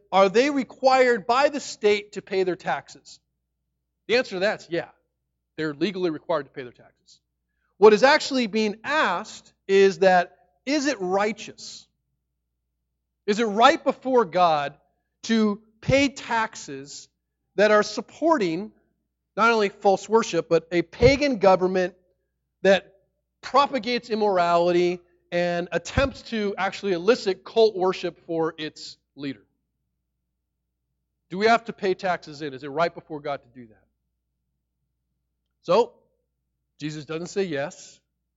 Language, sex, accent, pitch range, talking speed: English, male, American, 120-200 Hz, 135 wpm